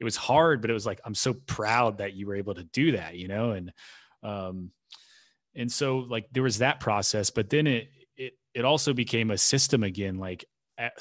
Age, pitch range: 30-49, 95-115 Hz